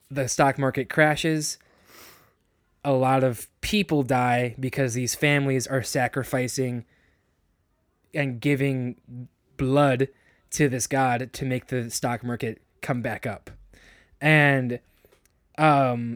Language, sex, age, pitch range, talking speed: English, male, 20-39, 120-140 Hz, 110 wpm